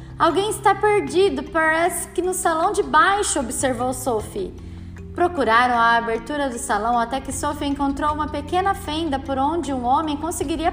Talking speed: 155 wpm